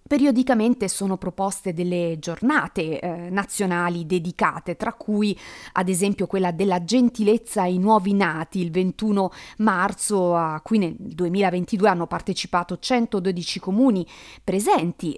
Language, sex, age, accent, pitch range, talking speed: Italian, female, 30-49, native, 175-220 Hz, 120 wpm